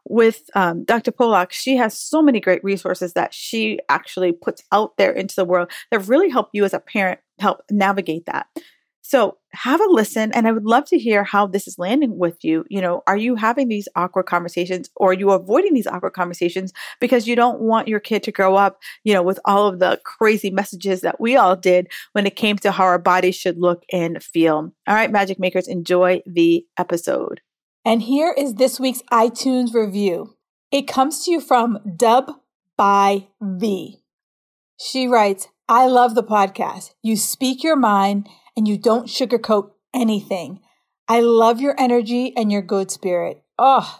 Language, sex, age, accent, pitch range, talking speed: English, female, 40-59, American, 190-245 Hz, 190 wpm